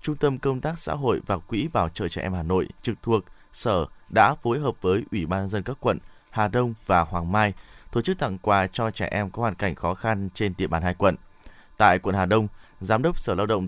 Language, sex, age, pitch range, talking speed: Vietnamese, male, 20-39, 95-120 Hz, 255 wpm